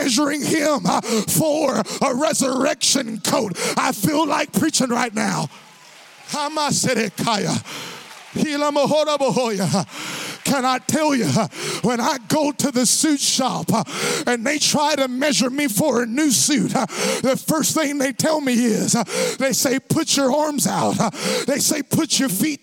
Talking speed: 140 wpm